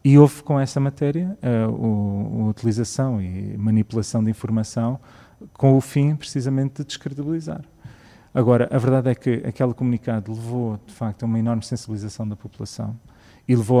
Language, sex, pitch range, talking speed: Portuguese, male, 115-130 Hz, 160 wpm